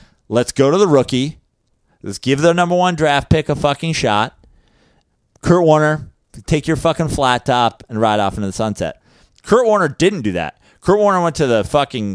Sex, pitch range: male, 120-165 Hz